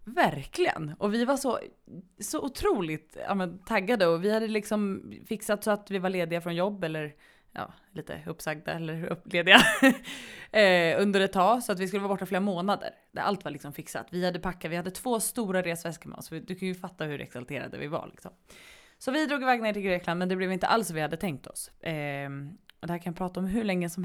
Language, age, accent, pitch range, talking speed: English, 20-39, Swedish, 165-210 Hz, 230 wpm